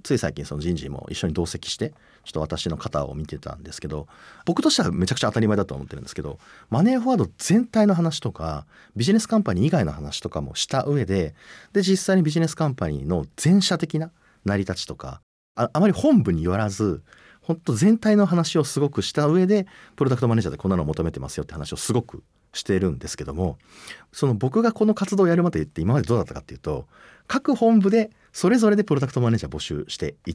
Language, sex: Japanese, male